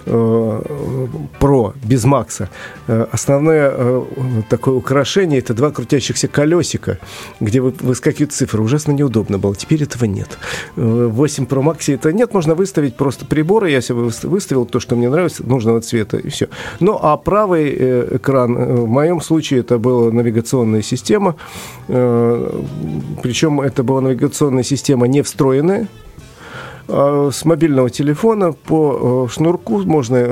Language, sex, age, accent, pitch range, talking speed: Russian, male, 40-59, native, 120-150 Hz, 125 wpm